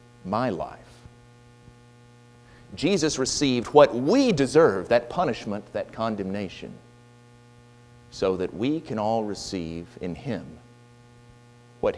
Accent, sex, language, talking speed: American, male, English, 100 wpm